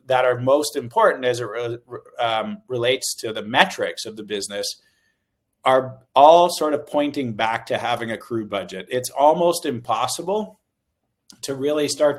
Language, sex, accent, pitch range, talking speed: English, male, American, 115-145 Hz, 155 wpm